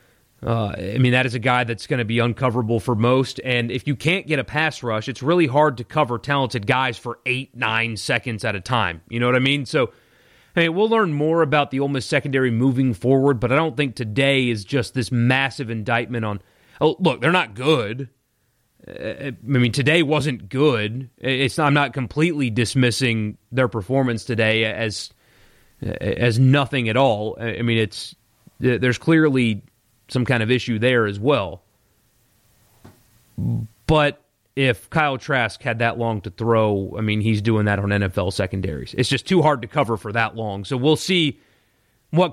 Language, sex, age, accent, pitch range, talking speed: English, male, 30-49, American, 110-135 Hz, 185 wpm